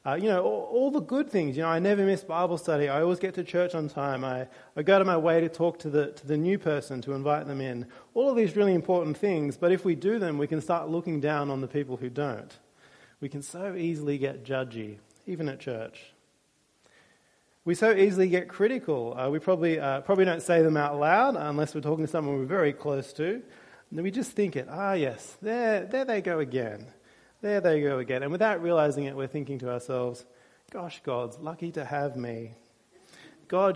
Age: 30-49